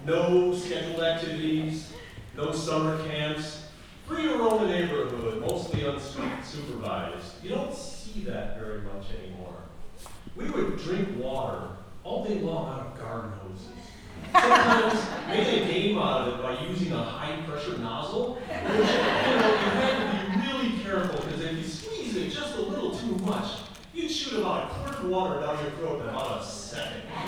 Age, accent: 40-59, American